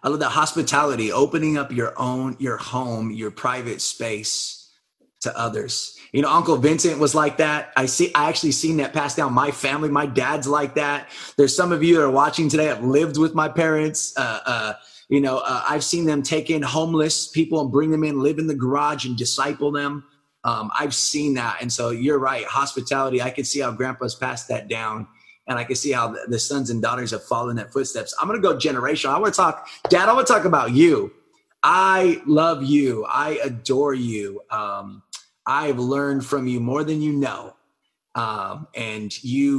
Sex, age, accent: male, 20-39, American